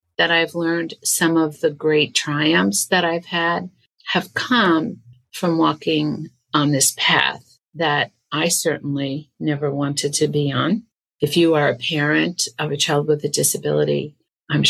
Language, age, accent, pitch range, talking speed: English, 50-69, American, 145-170 Hz, 155 wpm